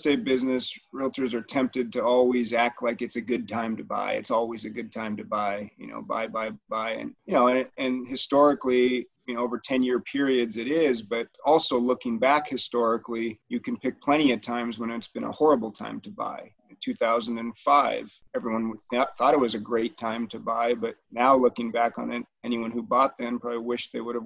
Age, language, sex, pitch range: 30-49, English, male, 120-150 Hz